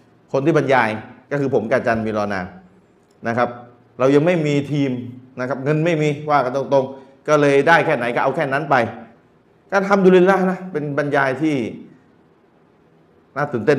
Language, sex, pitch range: Thai, male, 120-150 Hz